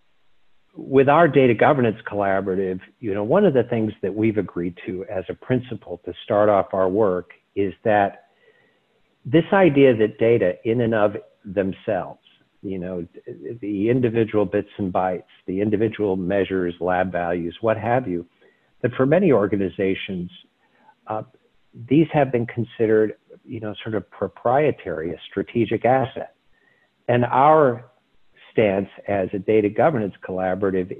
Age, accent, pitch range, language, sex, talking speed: 50-69, American, 95-120 Hz, English, male, 140 wpm